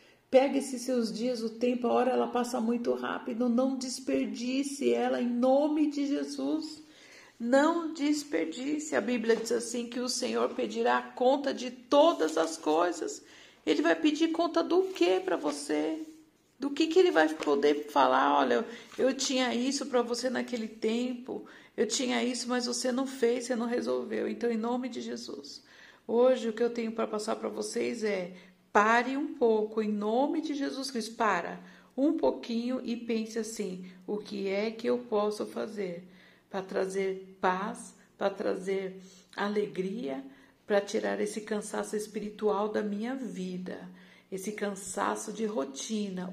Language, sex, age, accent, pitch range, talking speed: Portuguese, female, 50-69, Brazilian, 195-255 Hz, 155 wpm